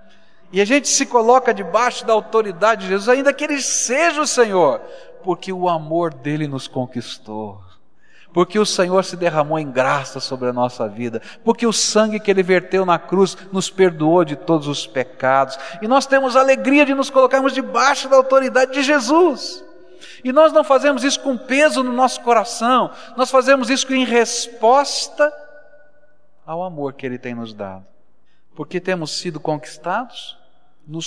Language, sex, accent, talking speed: Portuguese, male, Brazilian, 165 wpm